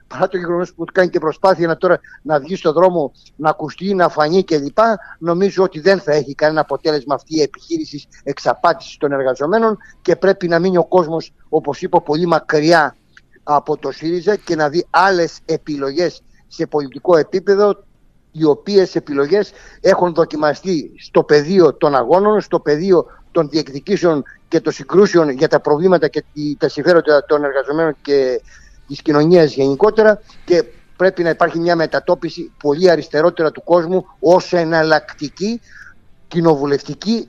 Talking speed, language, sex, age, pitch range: 145 wpm, Greek, male, 50-69, 150-180 Hz